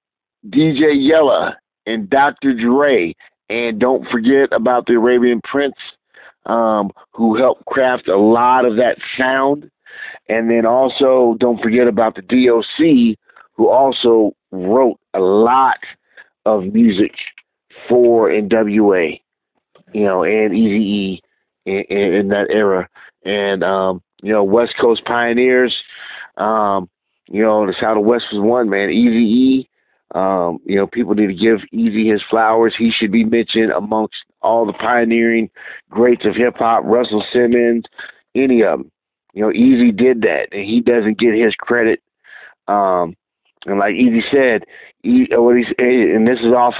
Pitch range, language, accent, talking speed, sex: 105-125 Hz, English, American, 145 wpm, male